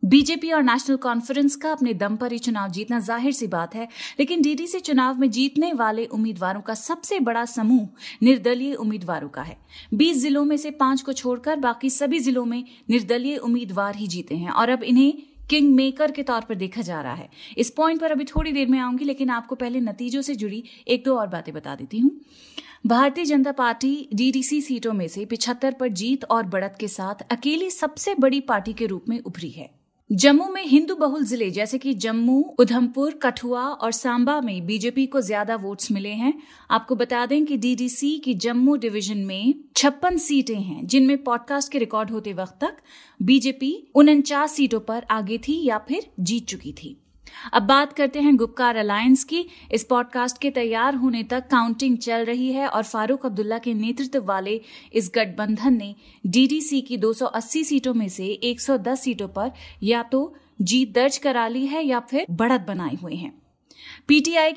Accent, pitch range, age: native, 225-280 Hz, 30-49